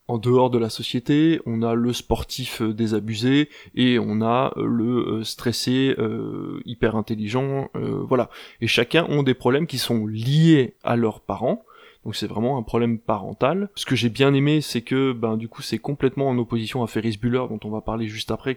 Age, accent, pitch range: 20-39, French, 110-130 Hz